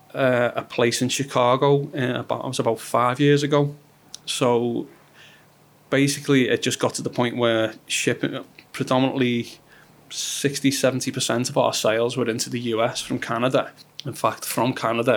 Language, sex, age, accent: English, male, 20-39, British